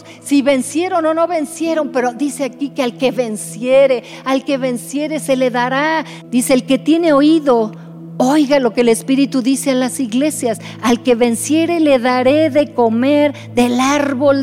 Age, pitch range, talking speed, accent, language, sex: 40-59, 250-295 Hz, 170 wpm, Mexican, Spanish, female